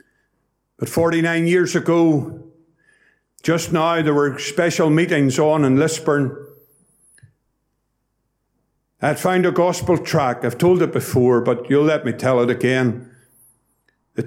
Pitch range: 135-175 Hz